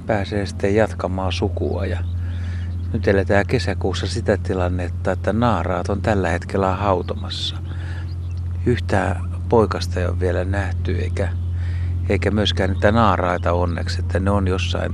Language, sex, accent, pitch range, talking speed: Finnish, male, native, 90-95 Hz, 130 wpm